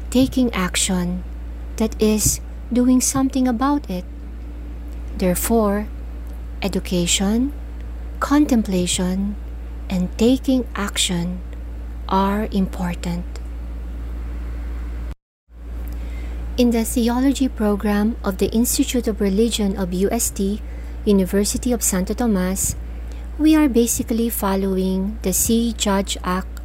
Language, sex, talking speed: Filipino, female, 90 wpm